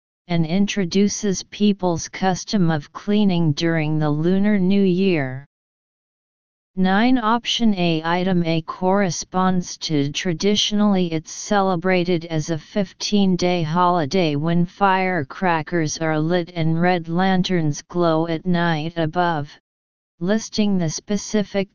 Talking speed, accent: 110 wpm, American